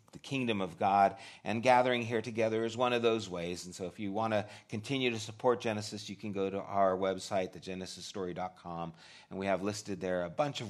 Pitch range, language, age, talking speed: 90-115 Hz, English, 30-49, 215 wpm